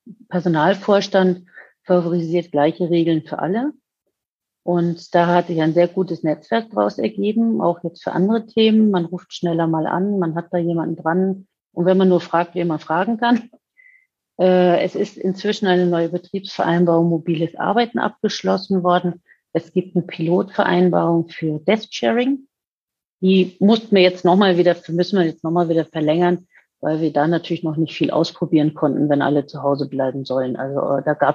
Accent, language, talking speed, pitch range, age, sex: German, German, 170 wpm, 165-190 Hz, 50-69, female